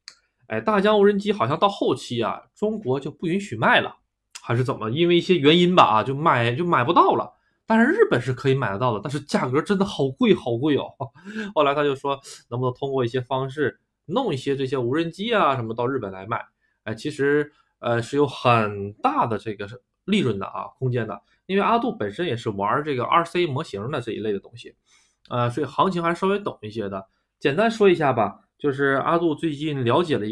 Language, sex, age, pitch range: Chinese, male, 20-39, 125-185 Hz